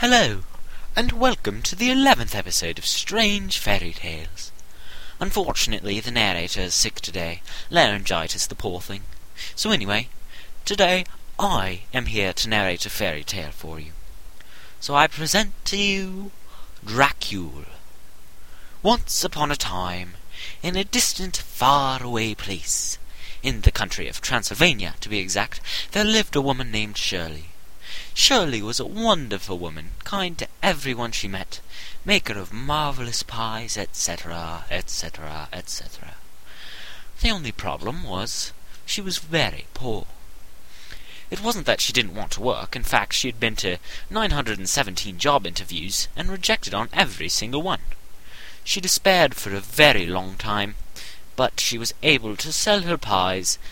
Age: 30-49